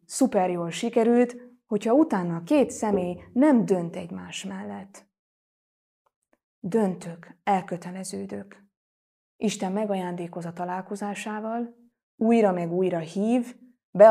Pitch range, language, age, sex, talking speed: 175-200 Hz, Hungarian, 20-39, female, 90 wpm